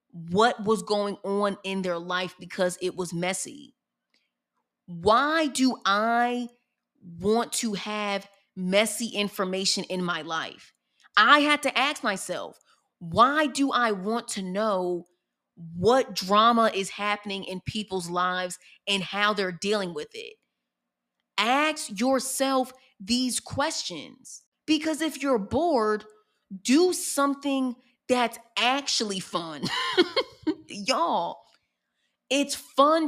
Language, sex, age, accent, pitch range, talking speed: English, female, 30-49, American, 200-270 Hz, 110 wpm